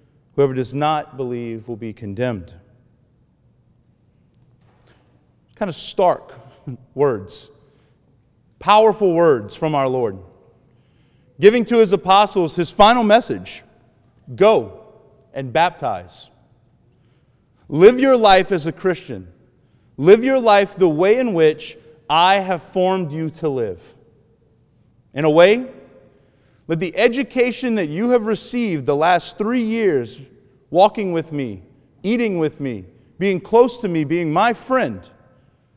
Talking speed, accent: 120 wpm, American